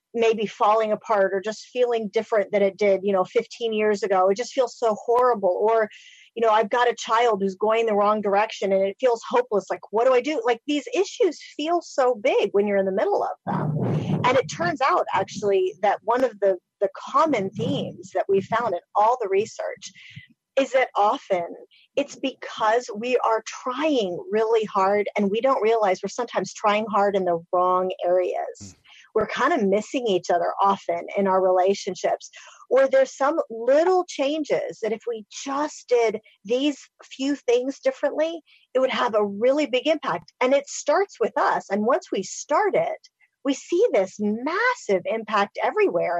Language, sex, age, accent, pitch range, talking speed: English, female, 40-59, American, 200-270 Hz, 185 wpm